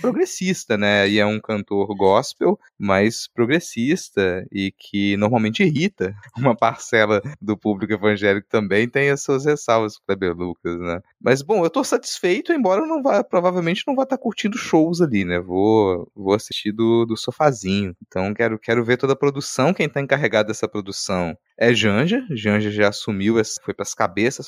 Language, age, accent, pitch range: Portuguese, 20-39, Brazilian, 105-175 Hz